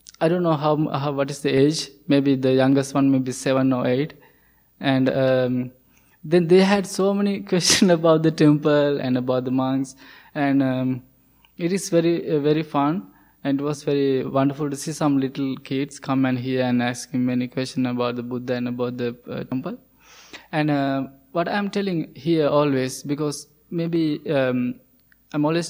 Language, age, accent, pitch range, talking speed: English, 20-39, Indian, 135-160 Hz, 180 wpm